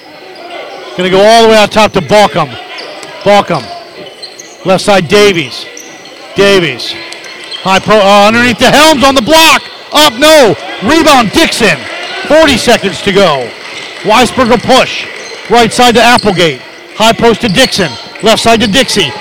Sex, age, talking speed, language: male, 50-69, 140 wpm, English